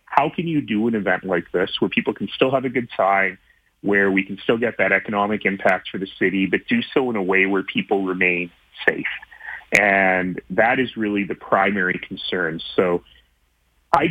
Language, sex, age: English, male, 30-49